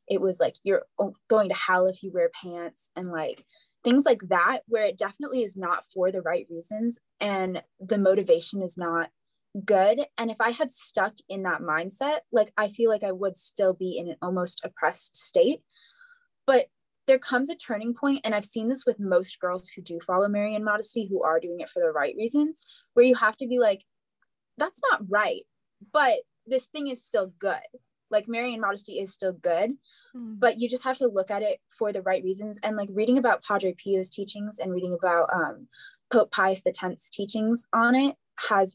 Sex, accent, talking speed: female, American, 200 wpm